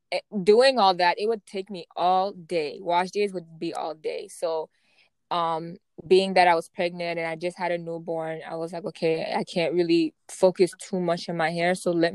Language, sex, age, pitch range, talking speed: English, female, 20-39, 165-195 Hz, 210 wpm